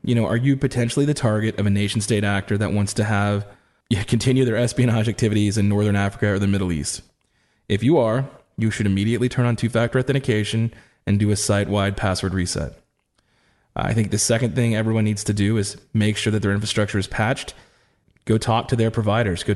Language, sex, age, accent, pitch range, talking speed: English, male, 20-39, American, 105-120 Hz, 205 wpm